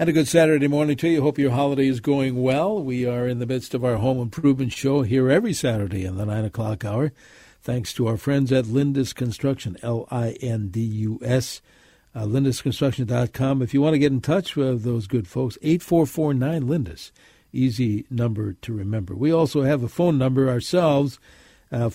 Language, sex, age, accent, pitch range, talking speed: English, male, 60-79, American, 120-145 Hz, 175 wpm